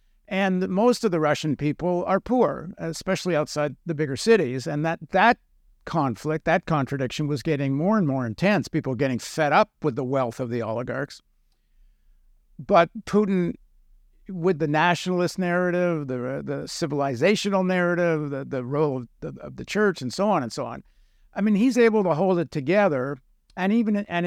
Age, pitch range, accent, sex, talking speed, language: 60-79, 130-180 Hz, American, male, 175 wpm, English